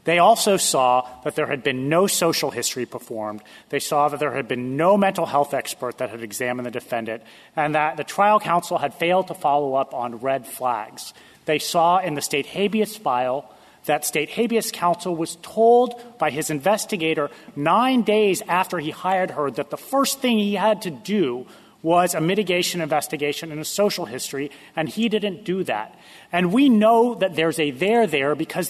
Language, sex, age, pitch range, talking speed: English, male, 30-49, 145-205 Hz, 190 wpm